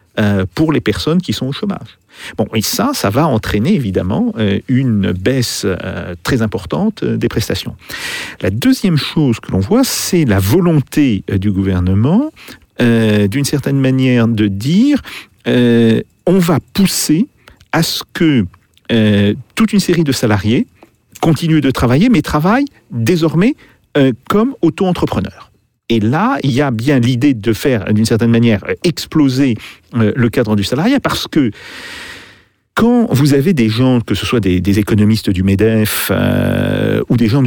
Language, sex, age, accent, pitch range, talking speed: French, male, 50-69, French, 105-145 Hz, 145 wpm